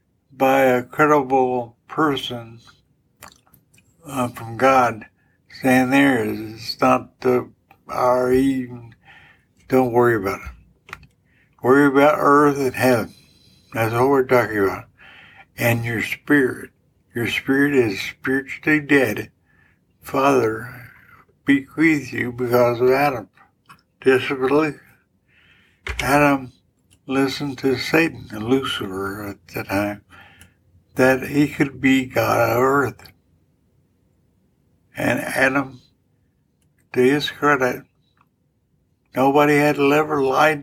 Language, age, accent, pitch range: English, 60-79, American, 115-135 Hz